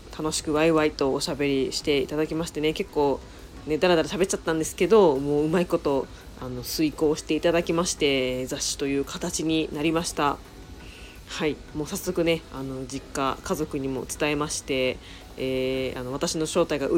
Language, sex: Japanese, female